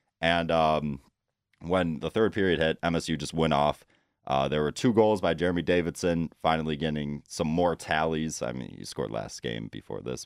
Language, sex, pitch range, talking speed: English, male, 75-90 Hz, 185 wpm